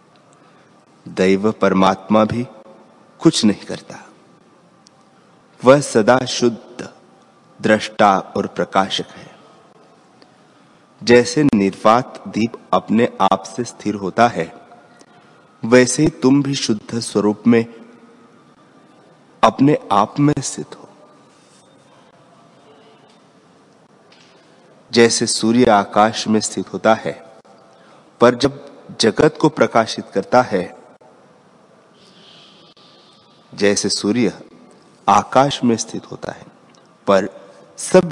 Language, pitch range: Hindi, 100-125 Hz